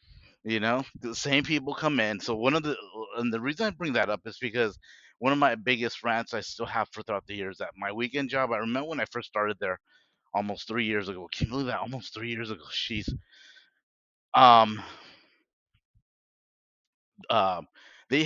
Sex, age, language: male, 30-49, English